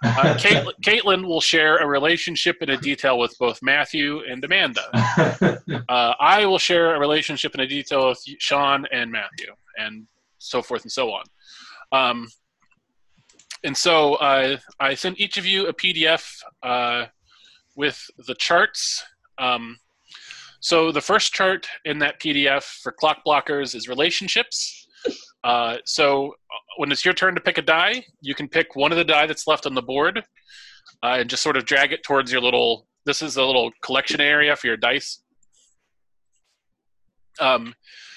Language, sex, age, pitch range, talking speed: English, male, 20-39, 135-175 Hz, 165 wpm